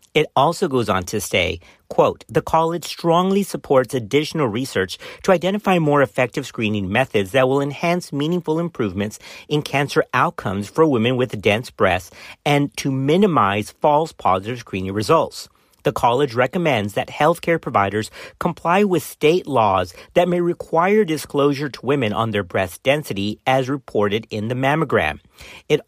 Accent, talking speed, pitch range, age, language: American, 150 wpm, 105-155 Hz, 50-69, English